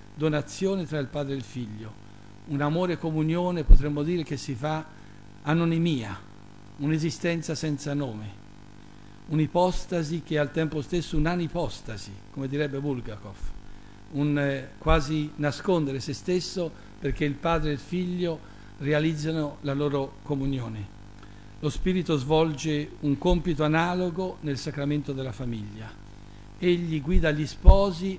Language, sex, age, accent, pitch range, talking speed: Italian, male, 60-79, native, 125-170 Hz, 125 wpm